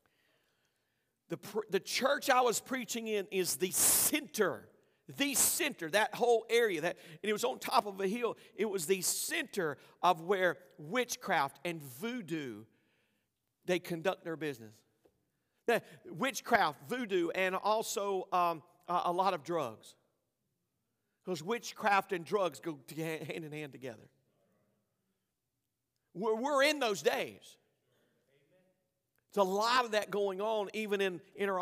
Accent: American